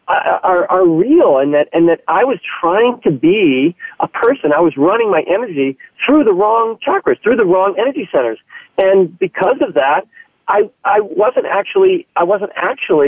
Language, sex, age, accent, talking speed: English, male, 40-59, American, 165 wpm